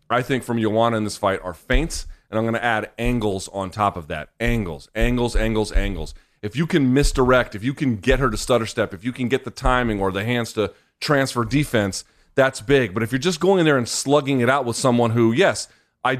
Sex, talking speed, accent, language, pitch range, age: male, 240 wpm, American, English, 115-150 Hz, 30-49